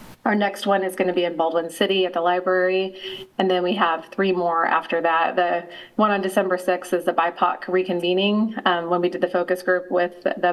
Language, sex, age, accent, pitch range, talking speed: English, female, 30-49, American, 175-190 Hz, 220 wpm